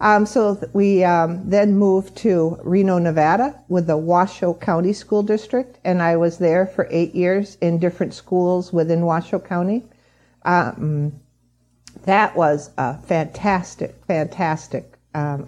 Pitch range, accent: 150-190 Hz, American